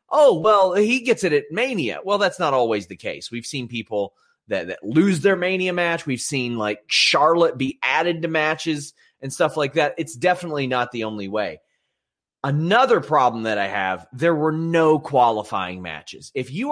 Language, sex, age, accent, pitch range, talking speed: English, male, 30-49, American, 125-180 Hz, 185 wpm